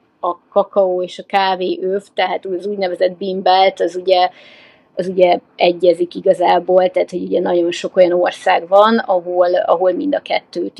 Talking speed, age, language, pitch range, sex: 160 wpm, 30-49, Hungarian, 180-205 Hz, female